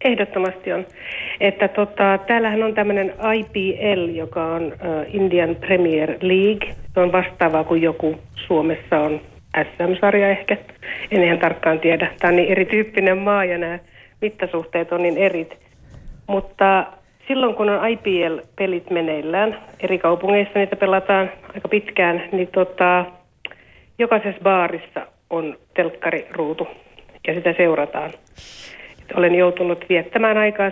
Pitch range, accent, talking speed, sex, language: 170-200 Hz, native, 125 wpm, female, Finnish